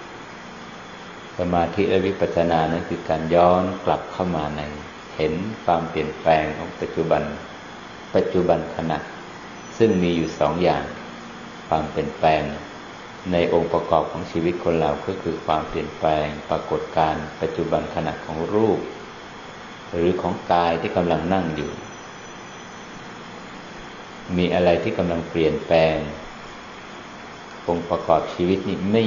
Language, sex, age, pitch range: Thai, male, 50-69, 80-90 Hz